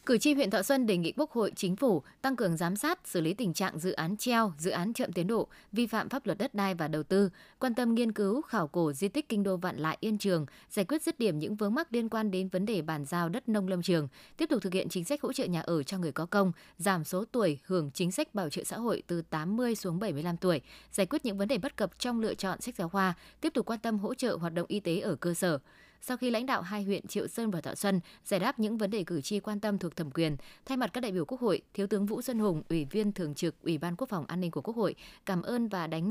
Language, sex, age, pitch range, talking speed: Vietnamese, female, 20-39, 175-225 Hz, 290 wpm